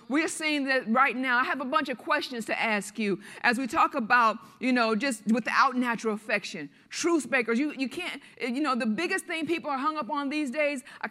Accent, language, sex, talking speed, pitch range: American, English, female, 225 wpm, 245-315 Hz